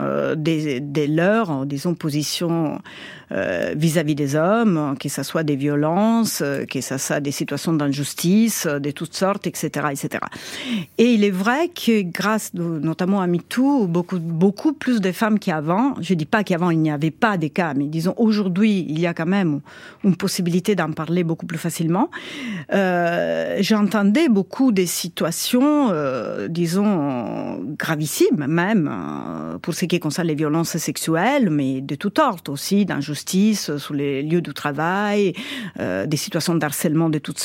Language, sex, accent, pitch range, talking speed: French, female, French, 160-220 Hz, 160 wpm